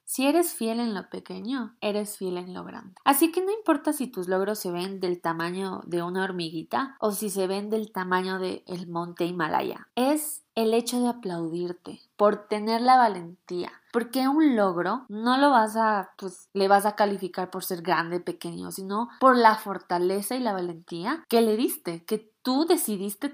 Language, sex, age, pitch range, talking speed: Spanish, female, 20-39, 185-245 Hz, 190 wpm